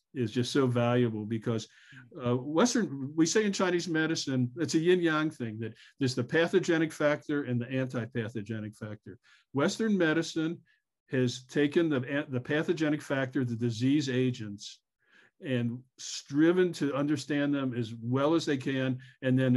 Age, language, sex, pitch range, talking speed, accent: 50-69, English, male, 120-150 Hz, 150 wpm, American